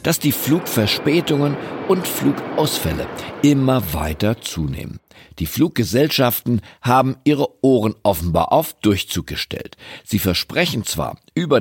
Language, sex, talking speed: German, male, 110 wpm